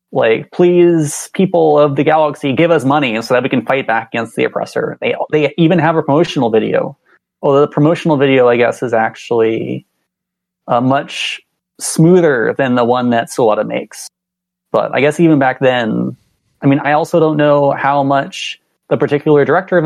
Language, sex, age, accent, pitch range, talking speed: English, male, 20-39, American, 120-155 Hz, 180 wpm